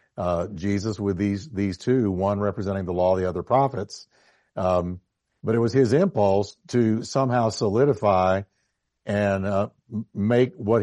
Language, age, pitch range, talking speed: English, 60-79, 100-125 Hz, 150 wpm